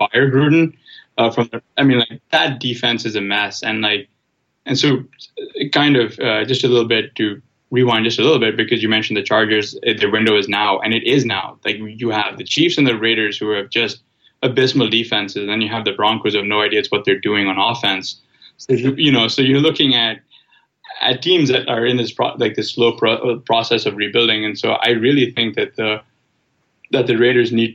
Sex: male